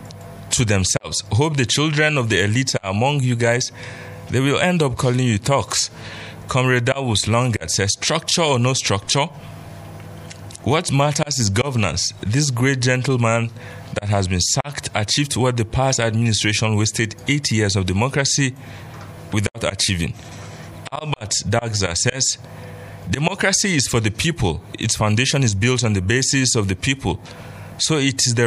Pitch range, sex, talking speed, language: 100-130 Hz, male, 150 wpm, English